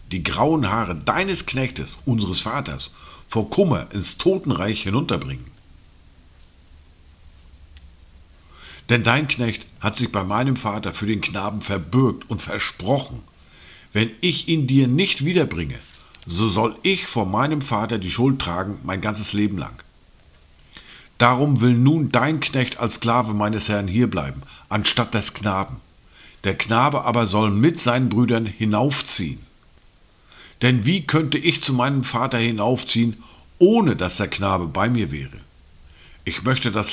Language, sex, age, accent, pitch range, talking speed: German, male, 50-69, German, 80-125 Hz, 135 wpm